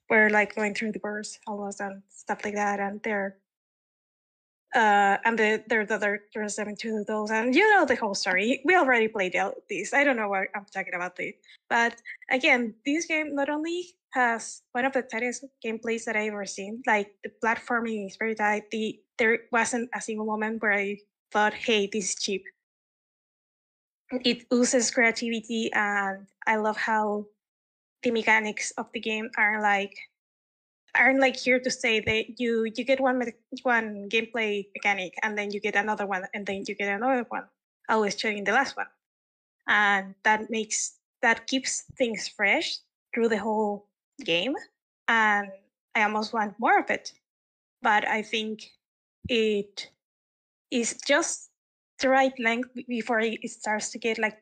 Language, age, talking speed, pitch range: English, 10-29, 170 wpm, 210-245 Hz